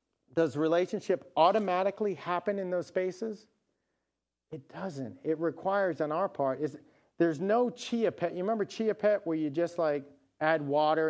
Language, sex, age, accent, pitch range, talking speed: English, male, 40-59, American, 130-190 Hz, 155 wpm